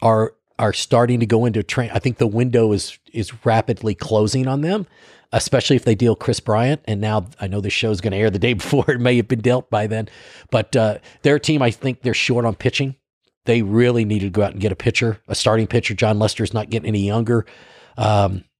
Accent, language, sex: American, English, male